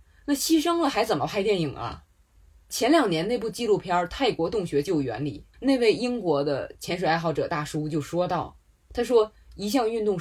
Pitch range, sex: 130-185 Hz, female